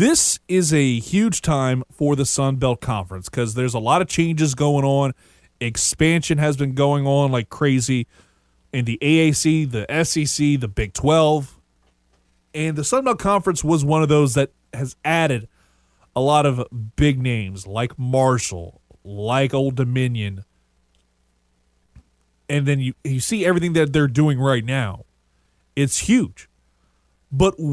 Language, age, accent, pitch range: English, 20-39, American, 115-165 Hz